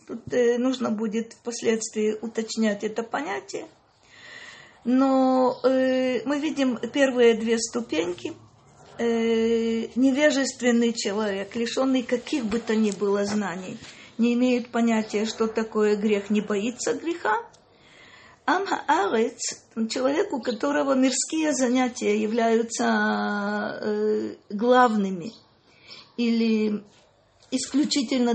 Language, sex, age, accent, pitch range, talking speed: Russian, female, 40-59, native, 220-265 Hz, 85 wpm